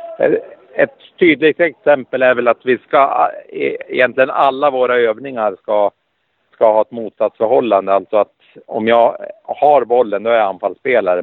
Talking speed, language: 145 wpm, Swedish